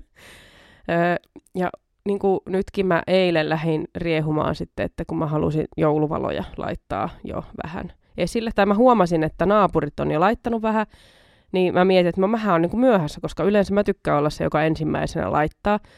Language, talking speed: Finnish, 165 wpm